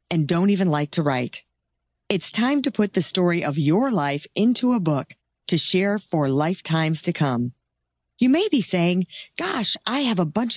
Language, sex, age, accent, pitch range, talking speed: English, female, 40-59, American, 145-215 Hz, 185 wpm